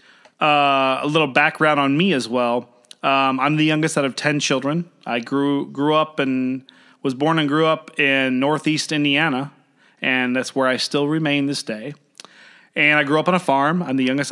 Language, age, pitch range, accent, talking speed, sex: English, 30-49, 130-155 Hz, American, 195 wpm, male